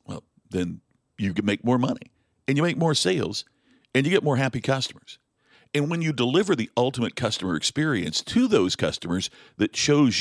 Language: English